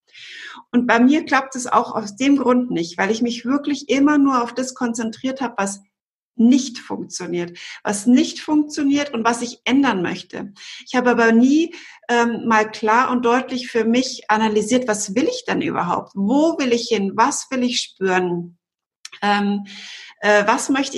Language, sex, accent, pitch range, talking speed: German, female, German, 210-260 Hz, 170 wpm